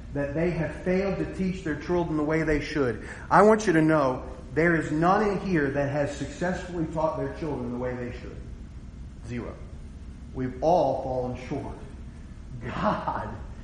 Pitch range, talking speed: 125-185 Hz, 165 wpm